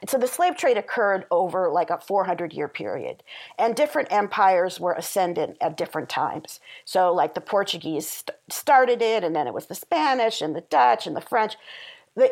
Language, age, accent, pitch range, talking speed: English, 50-69, American, 170-210 Hz, 185 wpm